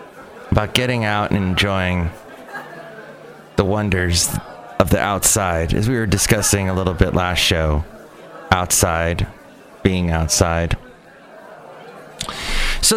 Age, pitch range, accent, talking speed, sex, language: 30-49, 105-135 Hz, American, 105 wpm, male, English